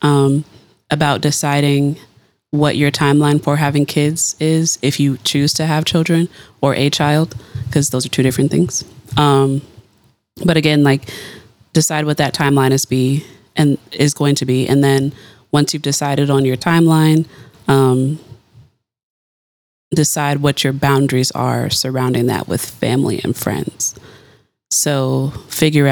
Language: English